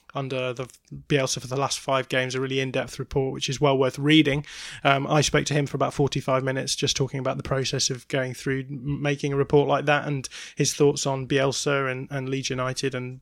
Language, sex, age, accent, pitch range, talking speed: English, male, 20-39, British, 135-150 Hz, 225 wpm